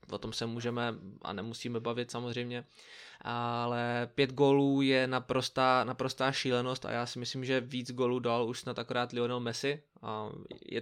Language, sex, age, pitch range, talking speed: Czech, male, 20-39, 115-130 Hz, 165 wpm